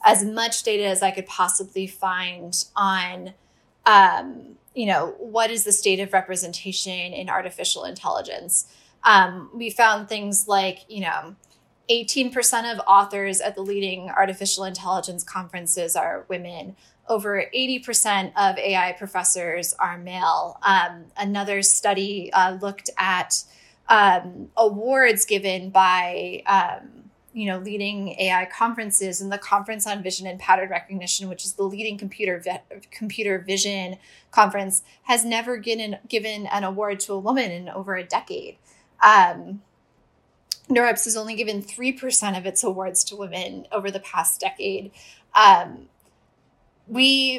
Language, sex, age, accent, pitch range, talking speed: English, female, 10-29, American, 190-220 Hz, 140 wpm